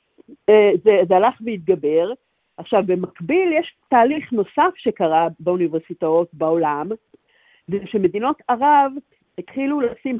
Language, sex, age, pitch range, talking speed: Hebrew, female, 50-69, 190-290 Hz, 95 wpm